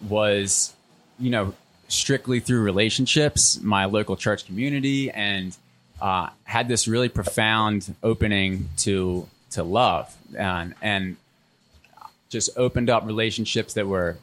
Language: English